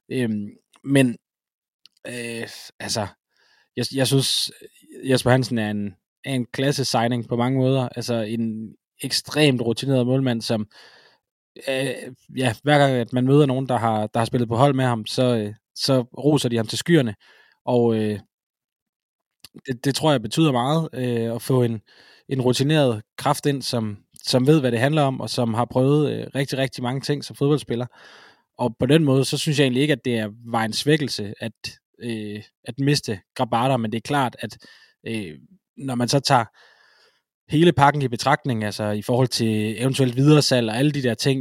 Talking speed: 185 wpm